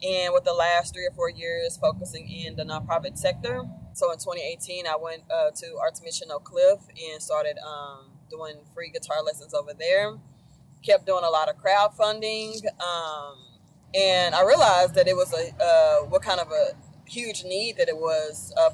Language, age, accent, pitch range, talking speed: English, 20-39, American, 155-210 Hz, 185 wpm